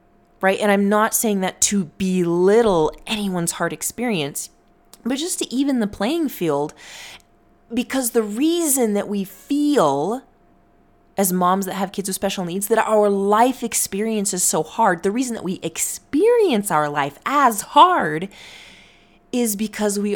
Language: English